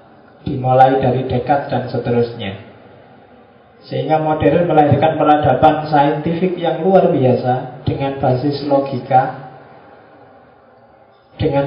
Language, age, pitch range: Indonesian, 20-39, 135-165 Hz